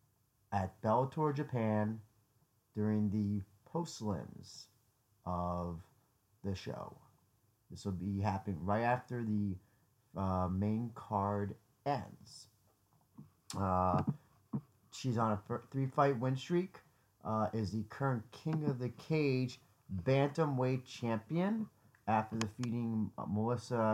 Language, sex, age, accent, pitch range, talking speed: English, male, 30-49, American, 105-130 Hz, 100 wpm